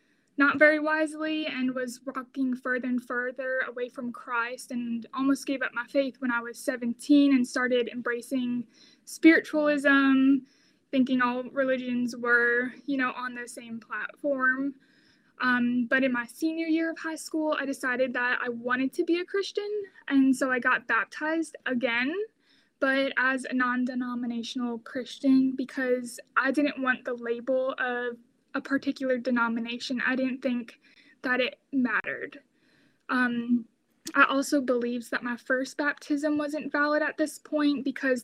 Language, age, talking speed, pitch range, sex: English, 20-39, 150 wpm, 245-275 Hz, female